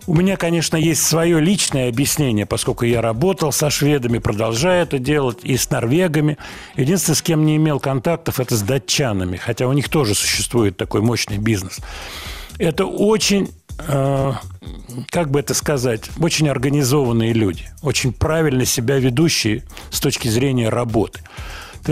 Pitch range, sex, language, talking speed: 115-155 Hz, male, Russian, 145 wpm